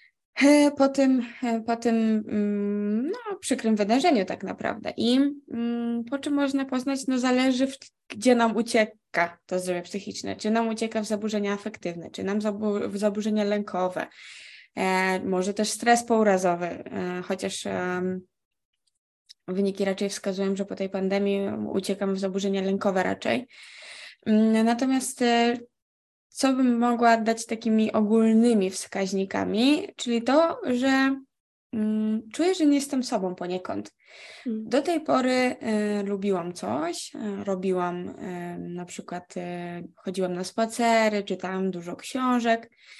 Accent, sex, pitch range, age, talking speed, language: native, female, 195-255 Hz, 20-39, 115 wpm, Polish